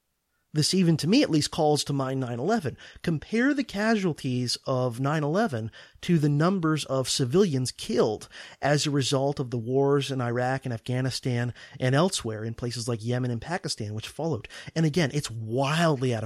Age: 30-49